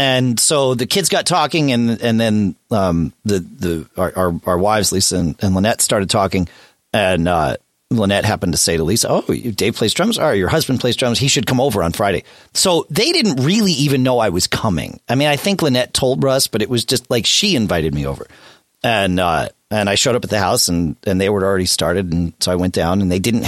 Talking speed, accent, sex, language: 240 wpm, American, male, English